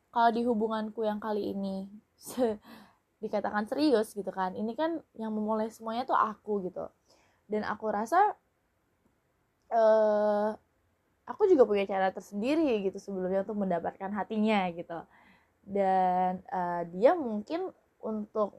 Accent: native